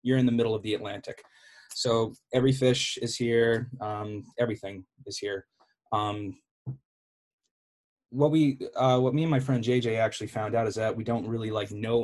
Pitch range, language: 110-135 Hz, English